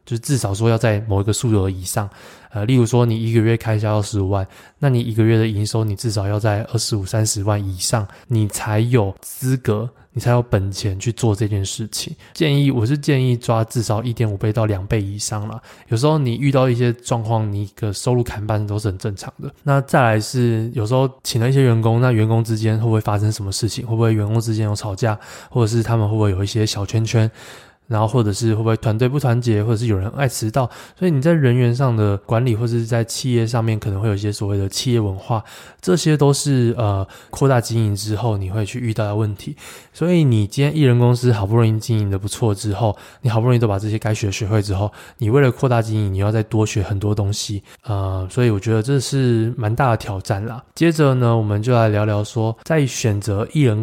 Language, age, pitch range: Chinese, 20-39, 105-125 Hz